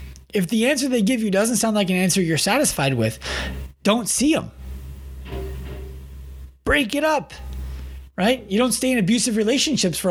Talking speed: 165 wpm